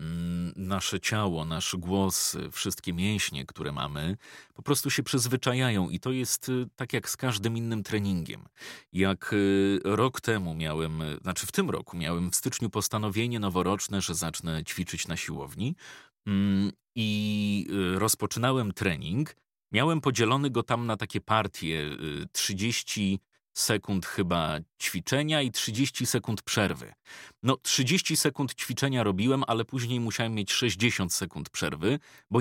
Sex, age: male, 30-49